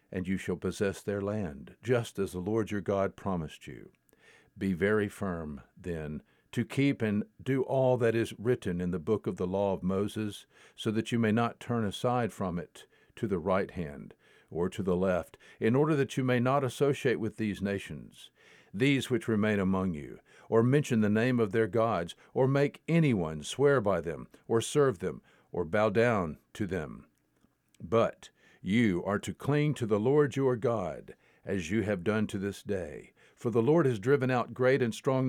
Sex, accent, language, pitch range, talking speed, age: male, American, English, 100-130 Hz, 190 wpm, 50-69